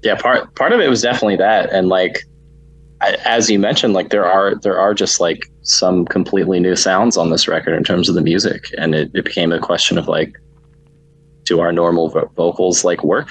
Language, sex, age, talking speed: English, male, 20-39, 215 wpm